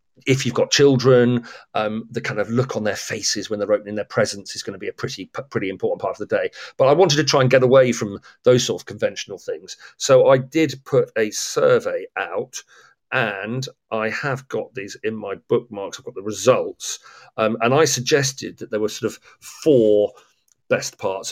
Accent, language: British, English